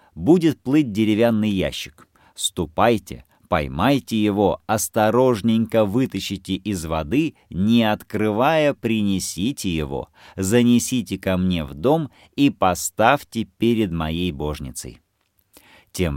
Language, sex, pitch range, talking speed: Russian, male, 90-120 Hz, 95 wpm